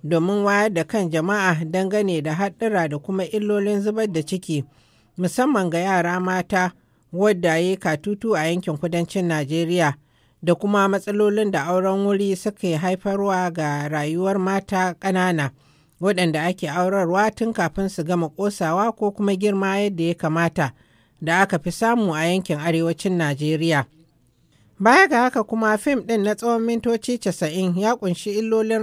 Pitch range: 165-210 Hz